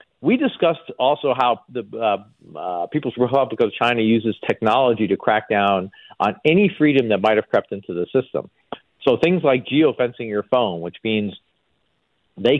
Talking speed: 165 wpm